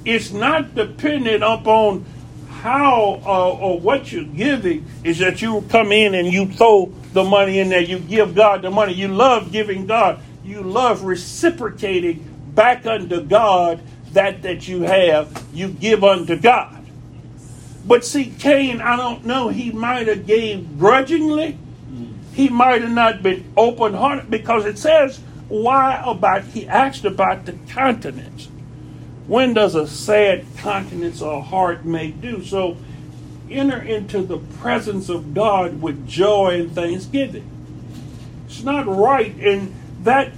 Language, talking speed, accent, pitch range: English, 145 wpm, American, 180-235 Hz